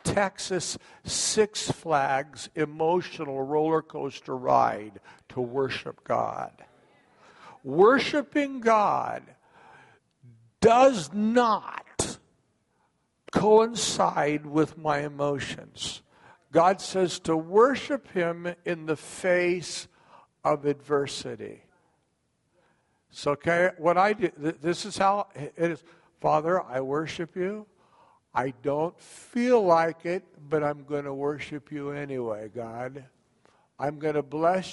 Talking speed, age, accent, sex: 105 wpm, 60-79, American, male